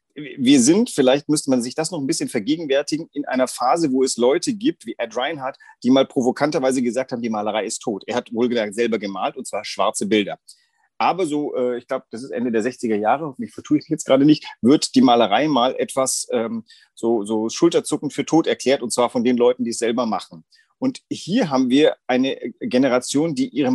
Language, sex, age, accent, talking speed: German, male, 40-59, German, 210 wpm